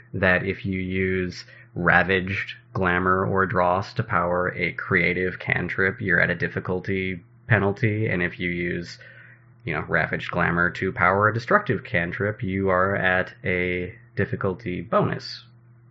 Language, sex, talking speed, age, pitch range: English, male, 140 wpm, 20-39, 90-120 Hz